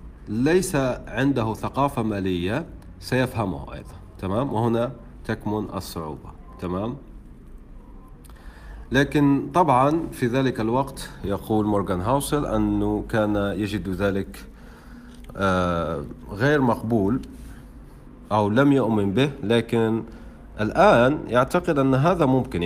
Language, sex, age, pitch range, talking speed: Arabic, male, 40-59, 95-135 Hz, 95 wpm